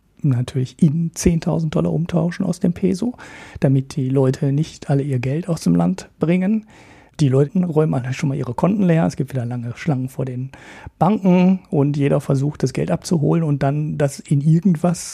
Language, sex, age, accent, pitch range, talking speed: German, male, 40-59, German, 135-175 Hz, 180 wpm